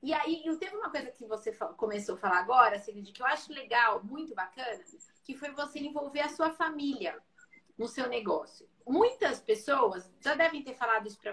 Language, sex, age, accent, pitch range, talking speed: Portuguese, female, 30-49, Brazilian, 250-335 Hz, 190 wpm